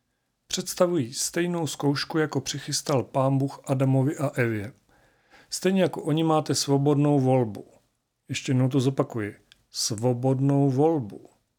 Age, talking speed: 40-59, 115 wpm